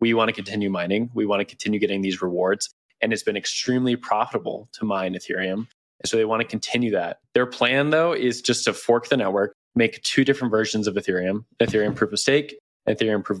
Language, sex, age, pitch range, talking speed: English, male, 20-39, 105-120 Hz, 215 wpm